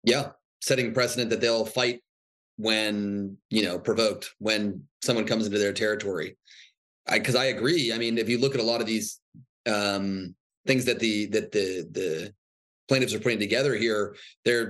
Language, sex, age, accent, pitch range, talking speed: English, male, 30-49, American, 105-130 Hz, 175 wpm